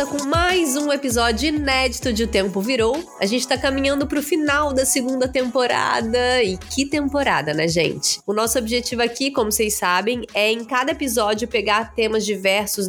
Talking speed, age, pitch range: 170 wpm, 20-39, 225-290 Hz